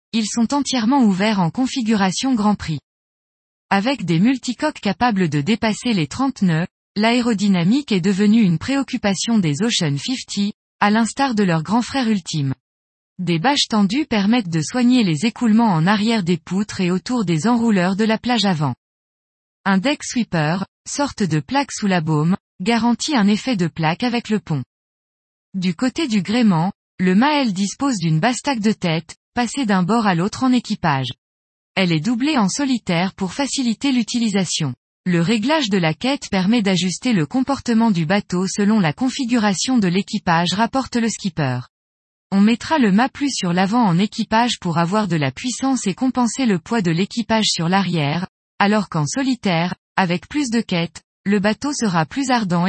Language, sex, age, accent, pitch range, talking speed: French, female, 20-39, French, 180-245 Hz, 170 wpm